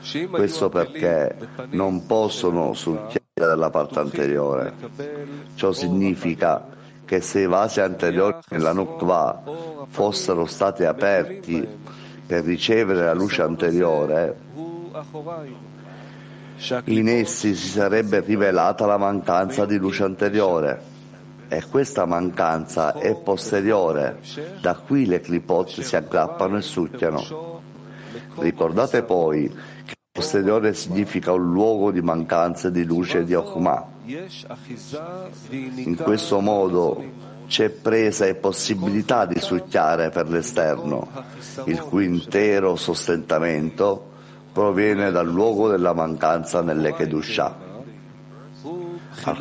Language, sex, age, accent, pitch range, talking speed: Italian, male, 50-69, native, 85-115 Hz, 100 wpm